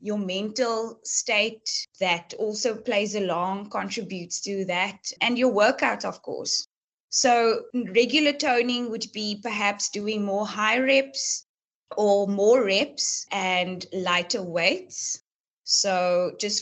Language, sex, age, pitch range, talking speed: English, female, 20-39, 185-230 Hz, 120 wpm